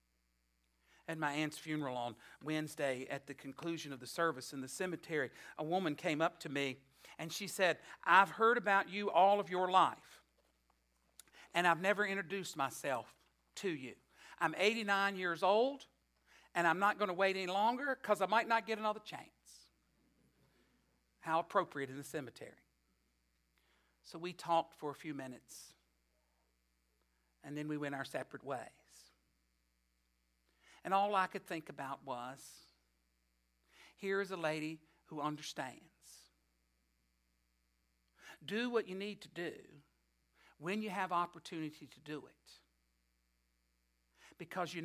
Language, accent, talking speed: English, American, 140 wpm